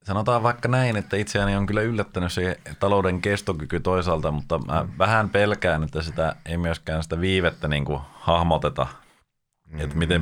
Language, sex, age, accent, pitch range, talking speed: Finnish, male, 30-49, native, 75-90 Hz, 155 wpm